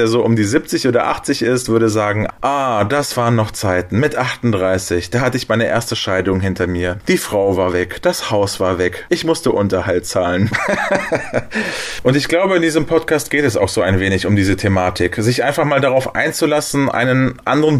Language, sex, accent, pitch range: German, male, German, 110-150 Hz